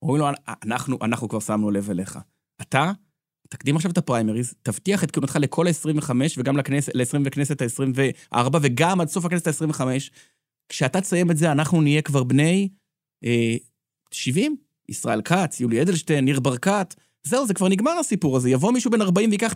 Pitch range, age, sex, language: 120-160 Hz, 30-49, male, Hebrew